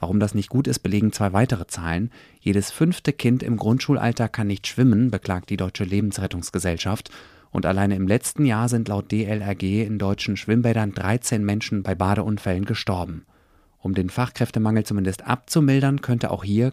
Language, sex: German, male